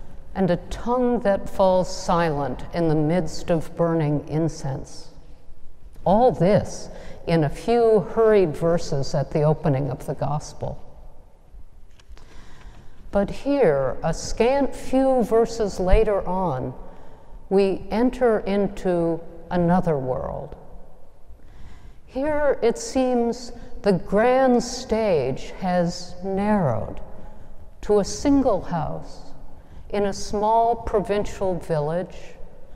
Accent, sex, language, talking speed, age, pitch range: American, female, English, 100 wpm, 60-79, 165-220 Hz